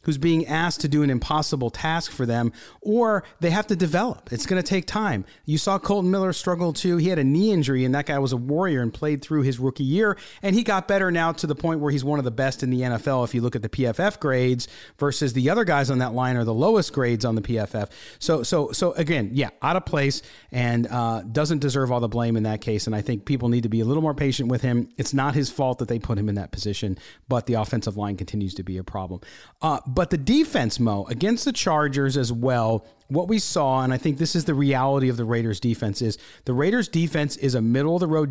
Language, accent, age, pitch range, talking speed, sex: English, American, 40-59, 120-155 Hz, 255 wpm, male